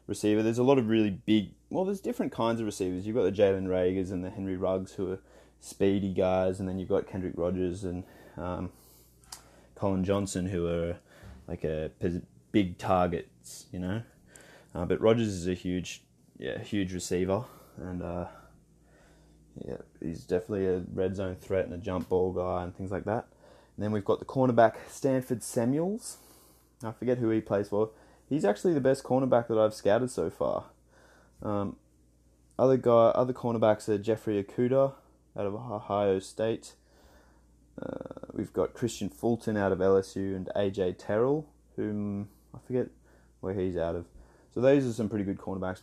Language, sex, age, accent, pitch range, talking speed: English, male, 20-39, Australian, 90-110 Hz, 175 wpm